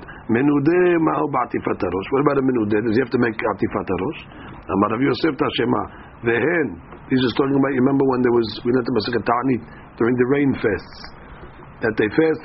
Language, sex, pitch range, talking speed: English, male, 120-155 Hz, 190 wpm